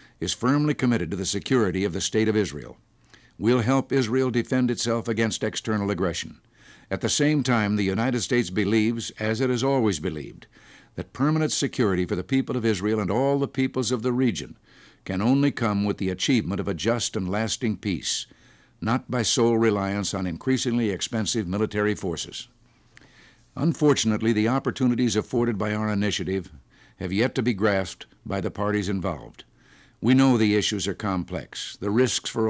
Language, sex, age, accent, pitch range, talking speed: English, male, 60-79, American, 100-120 Hz, 170 wpm